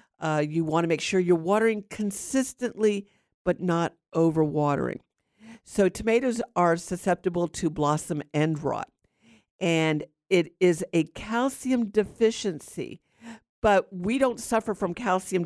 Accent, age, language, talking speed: American, 50-69, English, 125 wpm